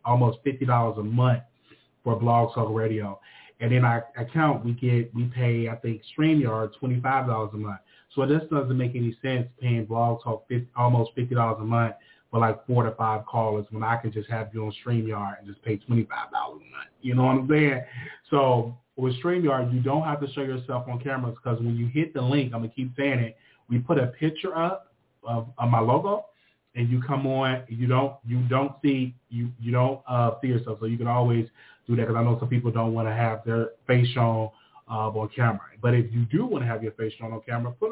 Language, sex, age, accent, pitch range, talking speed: English, male, 30-49, American, 115-135 Hz, 225 wpm